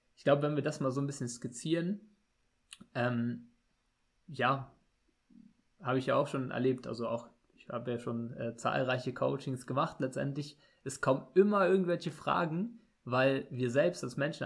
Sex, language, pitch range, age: male, German, 120-140 Hz, 20-39